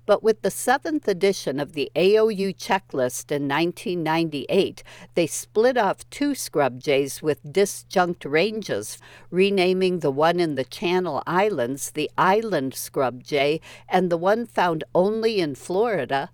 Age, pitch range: 60-79, 135-190 Hz